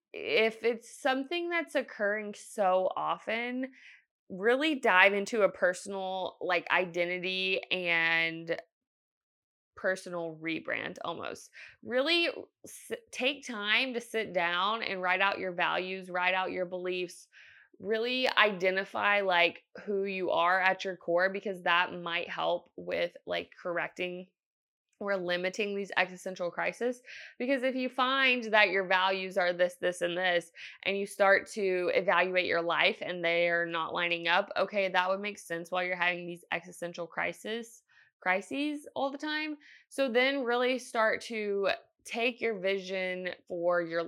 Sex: female